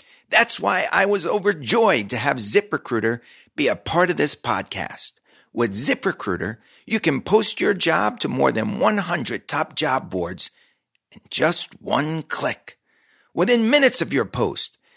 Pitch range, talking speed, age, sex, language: 150-210 Hz, 150 wpm, 50-69, male, English